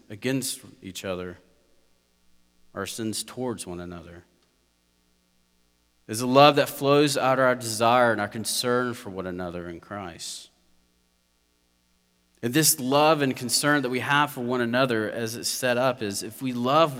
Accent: American